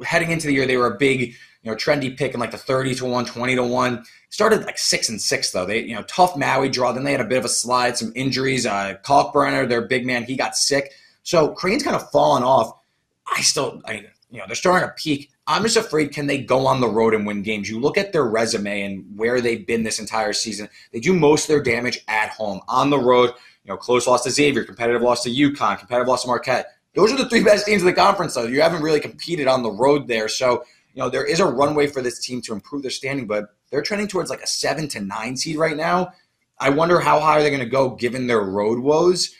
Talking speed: 260 wpm